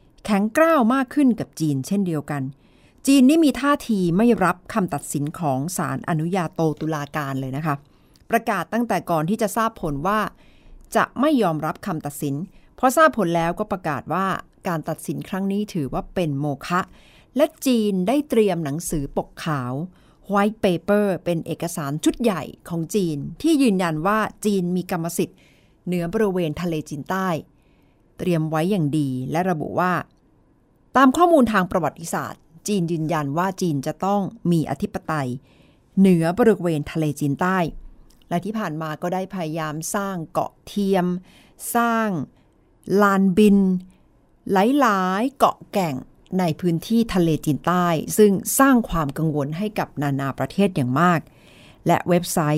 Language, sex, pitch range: Thai, female, 155-205 Hz